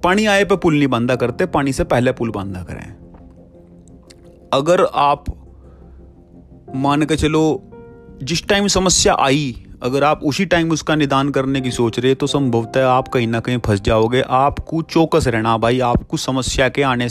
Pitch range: 115-150 Hz